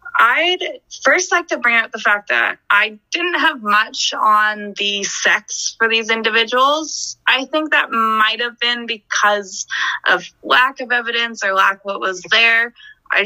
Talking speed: 165 wpm